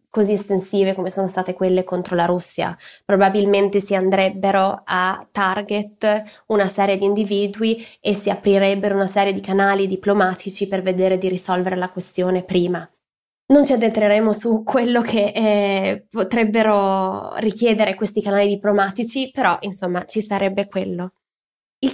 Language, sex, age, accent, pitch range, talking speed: Italian, female, 20-39, native, 195-235 Hz, 140 wpm